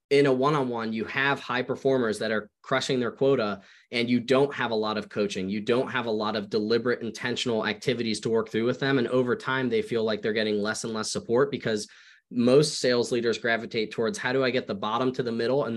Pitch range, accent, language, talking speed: 115-140 Hz, American, English, 235 wpm